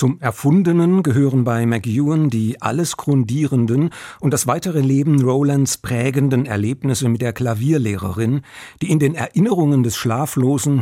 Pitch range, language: 115-150 Hz, German